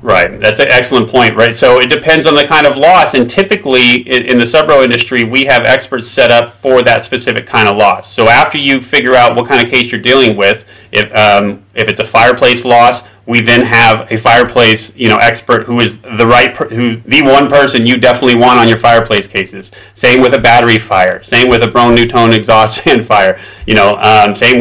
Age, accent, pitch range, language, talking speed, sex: 30-49, American, 110-125 Hz, English, 225 wpm, male